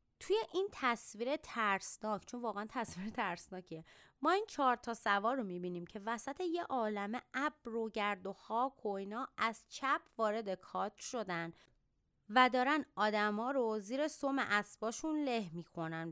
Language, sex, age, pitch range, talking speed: Persian, female, 30-49, 190-245 Hz, 135 wpm